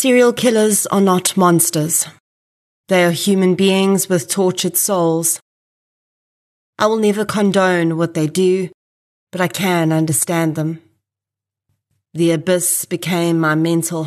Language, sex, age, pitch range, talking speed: English, female, 30-49, 160-190 Hz, 125 wpm